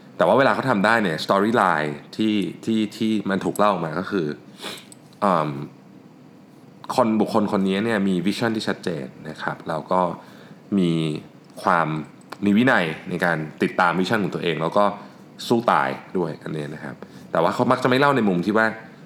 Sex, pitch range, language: male, 80-105 Hz, Thai